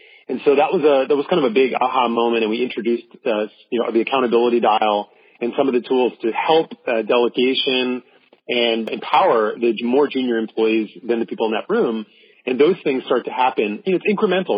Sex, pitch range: male, 115-145 Hz